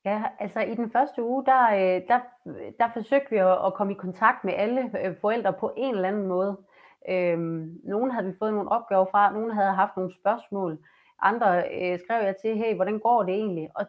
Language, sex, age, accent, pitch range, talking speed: Danish, female, 30-49, native, 185-230 Hz, 190 wpm